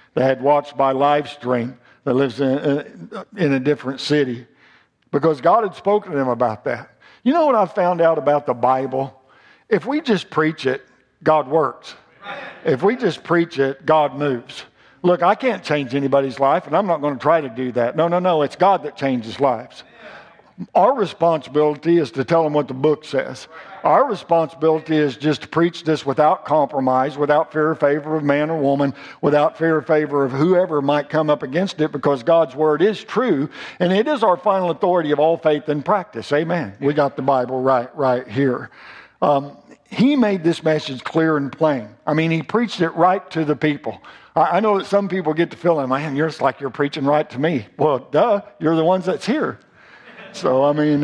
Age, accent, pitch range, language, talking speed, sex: 50-69, American, 140-170 Hz, English, 205 wpm, male